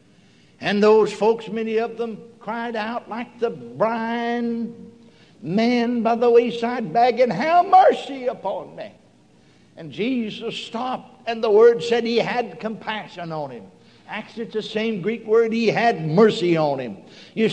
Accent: American